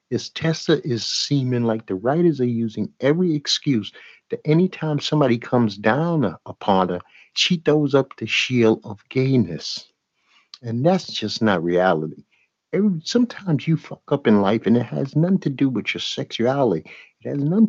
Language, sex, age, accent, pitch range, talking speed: English, male, 60-79, American, 115-160 Hz, 165 wpm